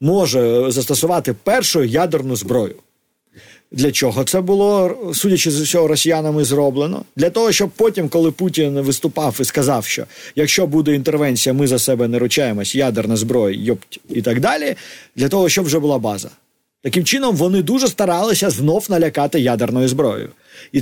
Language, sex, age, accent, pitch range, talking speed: Ukrainian, male, 50-69, native, 130-180 Hz, 155 wpm